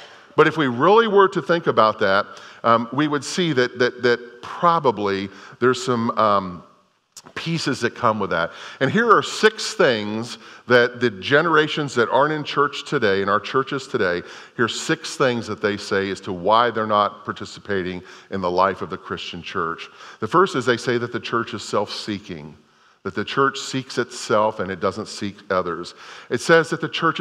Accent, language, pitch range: American, English, 115-145 Hz